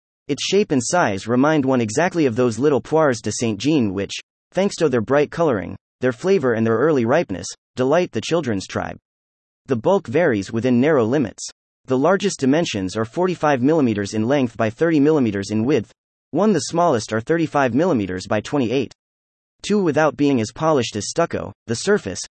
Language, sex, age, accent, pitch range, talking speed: English, male, 30-49, American, 110-165 Hz, 175 wpm